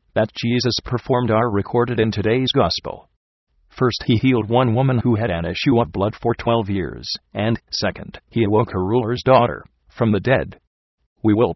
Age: 50-69